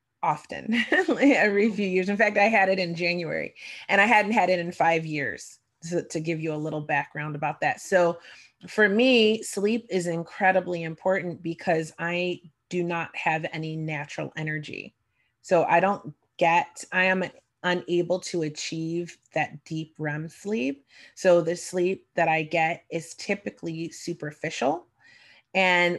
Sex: female